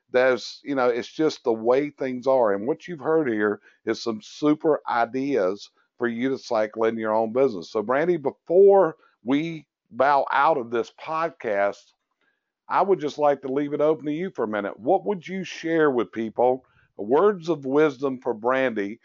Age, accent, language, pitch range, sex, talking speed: 50-69, American, English, 120-145 Hz, male, 185 wpm